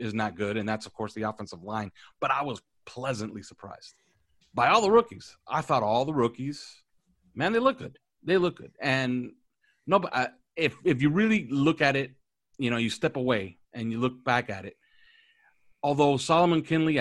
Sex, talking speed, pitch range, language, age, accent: male, 190 wpm, 115-160 Hz, English, 30-49, American